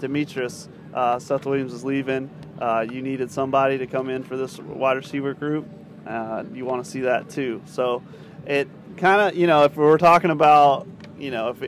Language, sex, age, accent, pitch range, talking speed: English, male, 30-49, American, 130-155 Hz, 195 wpm